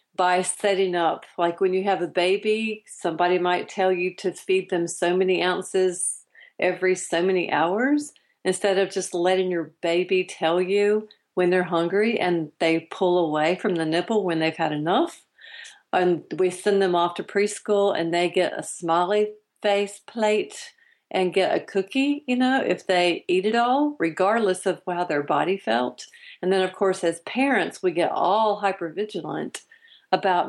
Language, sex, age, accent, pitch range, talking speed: English, female, 40-59, American, 175-210 Hz, 170 wpm